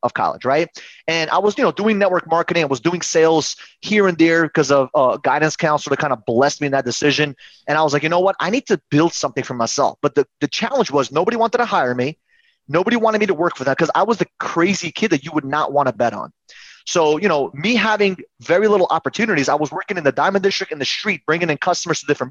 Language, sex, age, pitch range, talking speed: English, male, 30-49, 150-215 Hz, 270 wpm